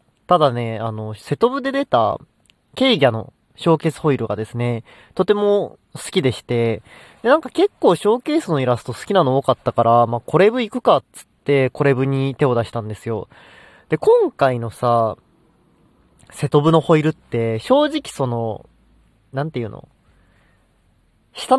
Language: Japanese